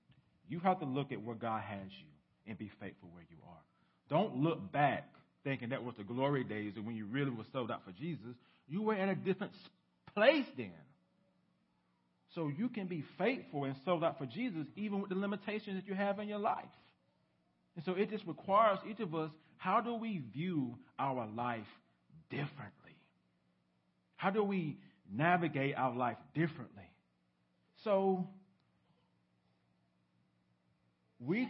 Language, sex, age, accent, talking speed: English, male, 40-59, American, 160 wpm